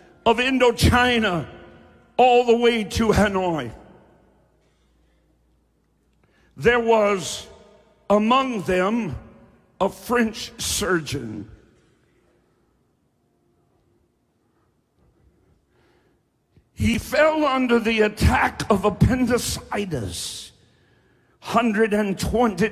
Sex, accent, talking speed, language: male, American, 60 wpm, English